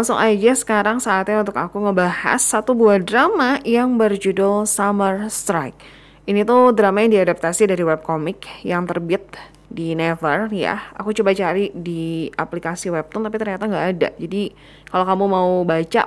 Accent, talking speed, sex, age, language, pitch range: native, 155 wpm, female, 20-39, Indonesian, 180-240 Hz